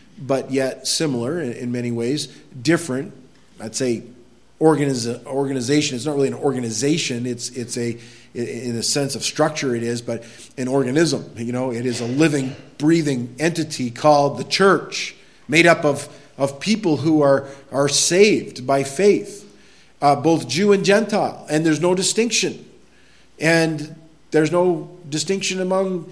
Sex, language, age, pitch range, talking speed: male, English, 40-59, 140-200 Hz, 145 wpm